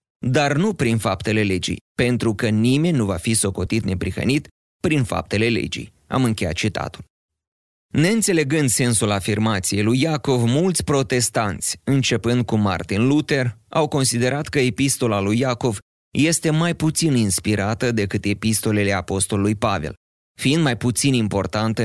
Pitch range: 105-135 Hz